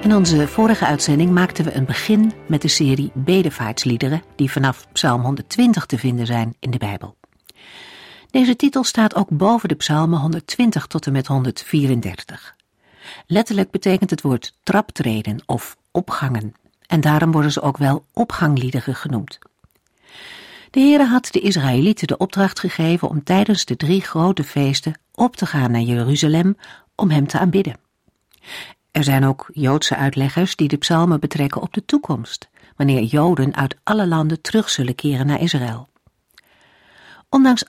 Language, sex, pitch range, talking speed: Dutch, female, 130-190 Hz, 150 wpm